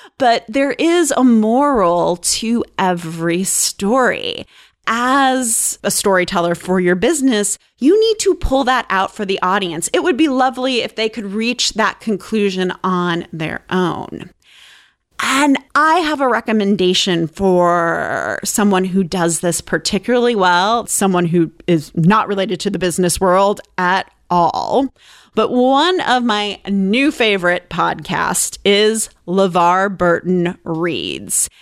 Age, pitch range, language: 30-49, 175-240 Hz, English